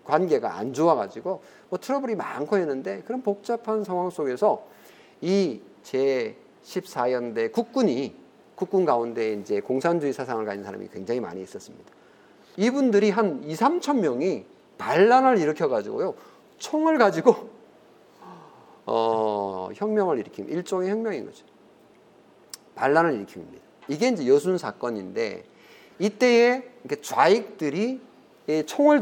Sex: male